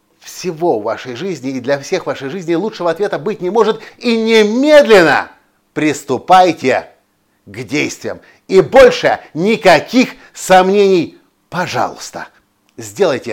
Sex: male